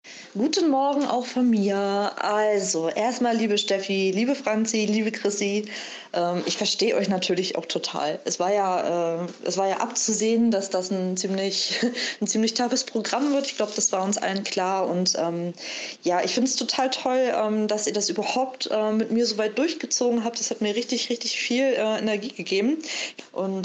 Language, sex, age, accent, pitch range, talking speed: German, female, 20-39, German, 190-235 Hz, 185 wpm